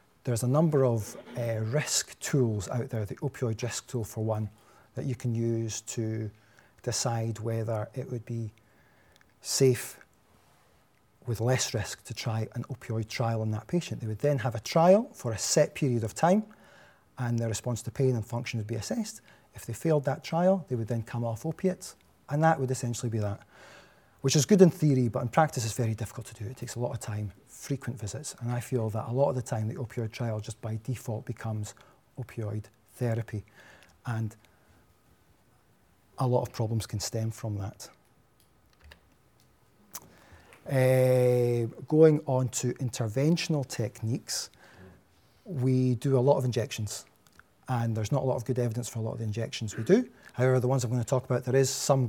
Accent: British